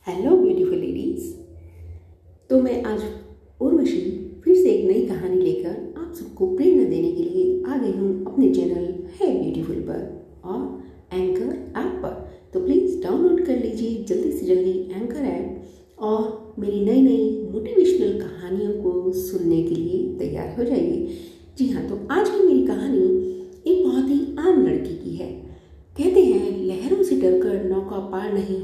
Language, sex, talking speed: Hindi, female, 155 wpm